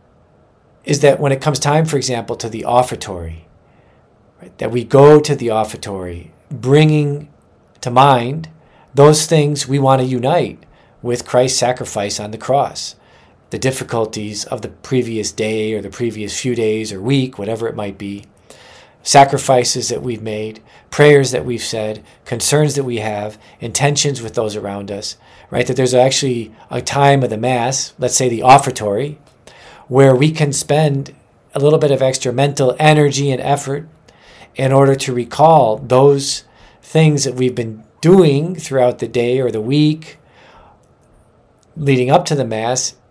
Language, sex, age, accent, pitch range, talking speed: English, male, 40-59, American, 110-140 Hz, 155 wpm